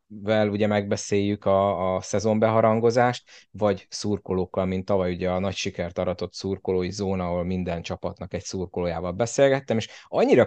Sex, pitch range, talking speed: male, 90-105 Hz, 130 wpm